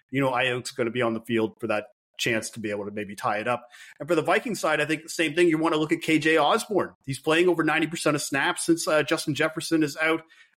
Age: 30-49